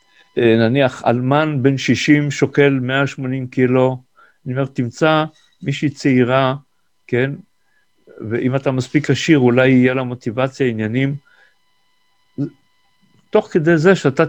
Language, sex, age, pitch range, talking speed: Hebrew, male, 50-69, 135-185 Hz, 110 wpm